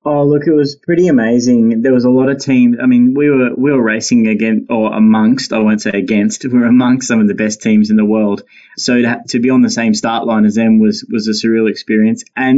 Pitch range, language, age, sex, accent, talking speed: 110-135 Hz, English, 20-39, male, Australian, 260 wpm